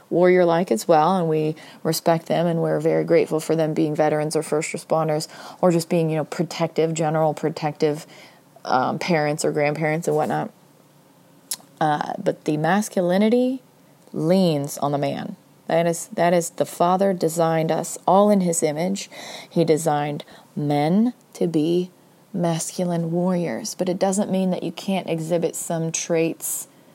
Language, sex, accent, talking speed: English, female, American, 155 wpm